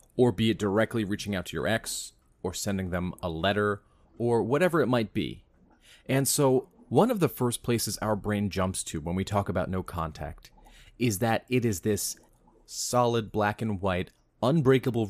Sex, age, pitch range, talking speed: male, 30-49, 95-130 Hz, 175 wpm